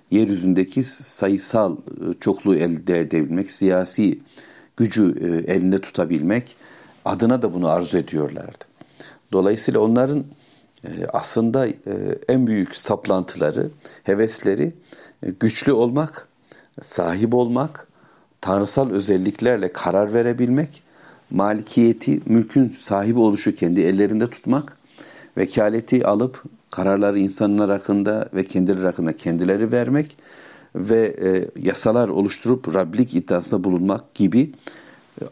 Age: 60-79